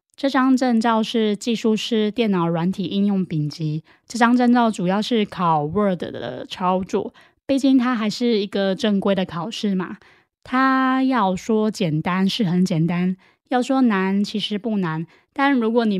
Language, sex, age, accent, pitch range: Chinese, female, 20-39, American, 185-230 Hz